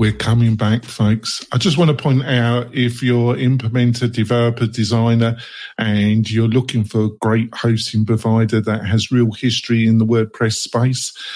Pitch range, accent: 110-130 Hz, British